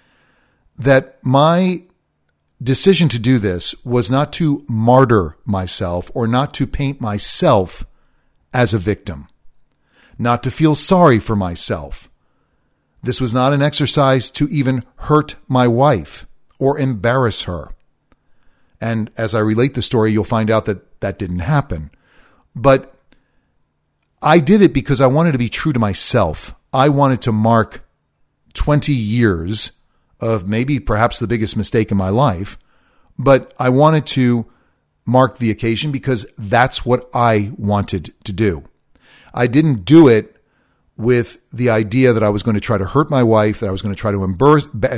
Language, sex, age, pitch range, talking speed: English, male, 40-59, 105-135 Hz, 155 wpm